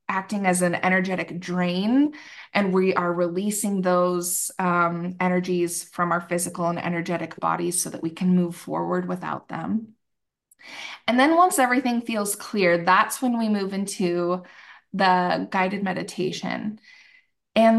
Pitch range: 180-220 Hz